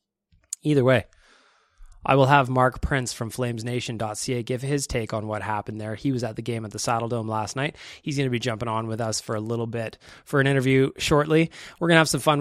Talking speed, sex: 230 wpm, male